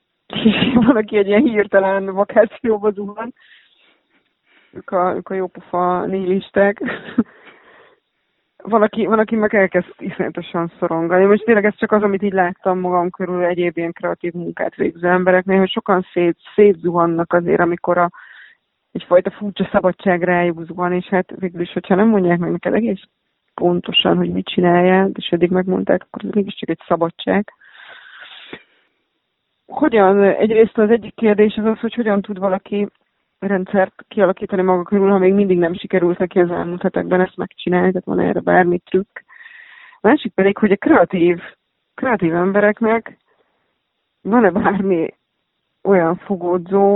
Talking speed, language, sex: 140 wpm, Hungarian, female